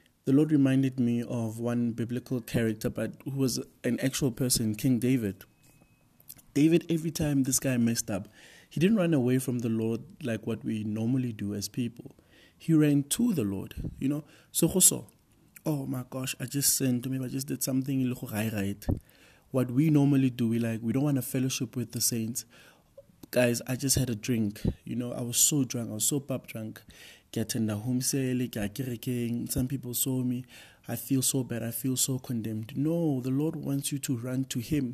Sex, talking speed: male, 185 wpm